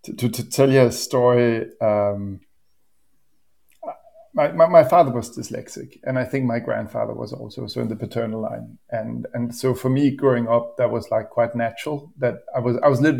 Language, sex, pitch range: English, male, 115-130 Hz